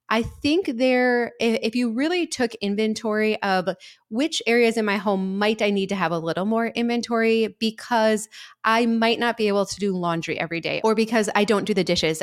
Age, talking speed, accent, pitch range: 20-39, 200 wpm, American, 170-220 Hz